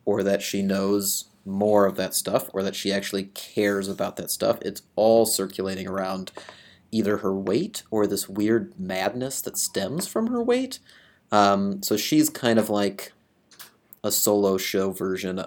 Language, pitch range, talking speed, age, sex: English, 95-115 Hz, 165 wpm, 30-49, male